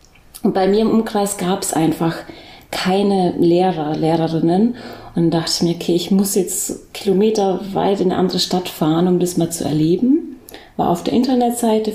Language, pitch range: German, 175-220 Hz